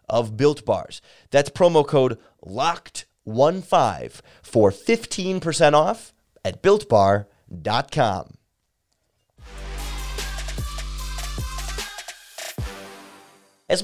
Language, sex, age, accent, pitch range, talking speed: English, male, 30-49, American, 105-145 Hz, 55 wpm